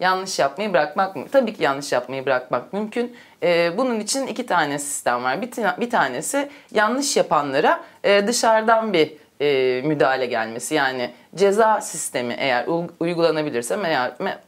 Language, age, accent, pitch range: Turkish, 30-49, native, 145-215 Hz